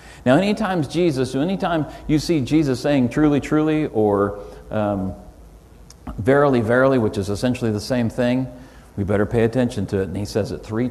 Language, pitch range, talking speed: English, 100-130 Hz, 170 wpm